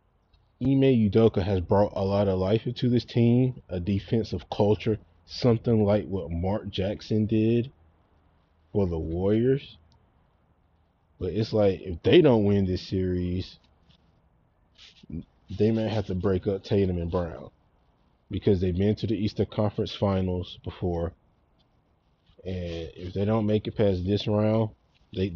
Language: English